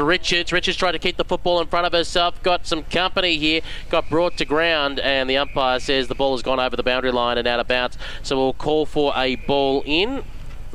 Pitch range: 125-170 Hz